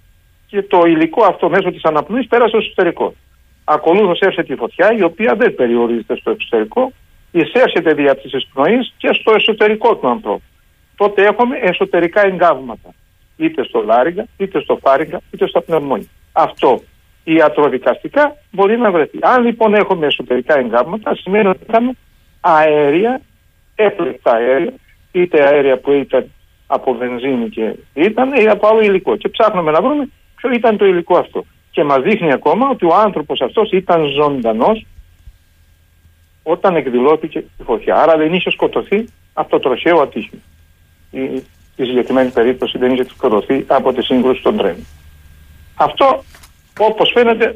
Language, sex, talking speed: Greek, male, 145 wpm